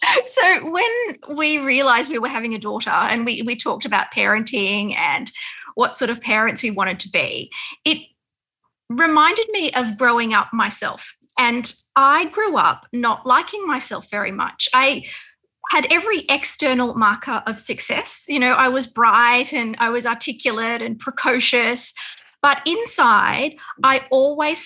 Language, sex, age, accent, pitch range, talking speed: English, female, 30-49, Australian, 235-310 Hz, 150 wpm